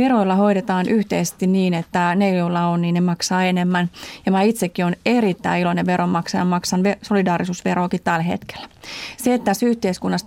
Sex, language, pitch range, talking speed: female, Finnish, 170-190 Hz, 160 wpm